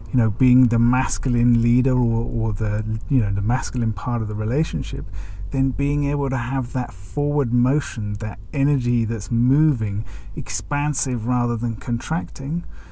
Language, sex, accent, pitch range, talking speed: English, male, British, 105-130 Hz, 155 wpm